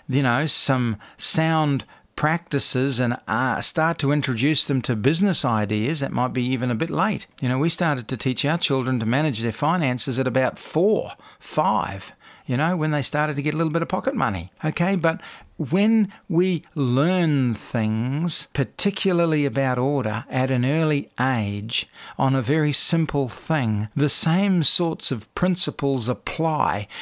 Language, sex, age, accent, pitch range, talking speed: English, male, 50-69, Australian, 125-155 Hz, 165 wpm